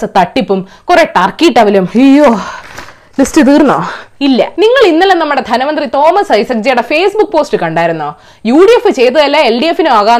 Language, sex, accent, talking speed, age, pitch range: Malayalam, female, native, 110 wpm, 20-39, 220-335 Hz